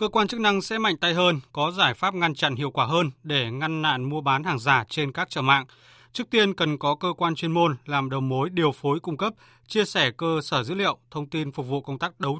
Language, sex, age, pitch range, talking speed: Vietnamese, male, 20-39, 135-175 Hz, 265 wpm